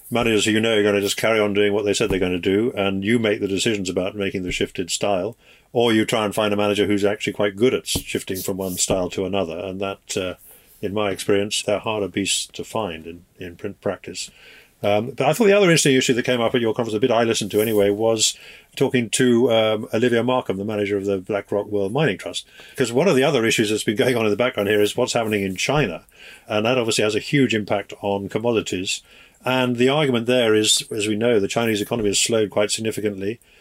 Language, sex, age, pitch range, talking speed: English, male, 50-69, 100-115 Hz, 245 wpm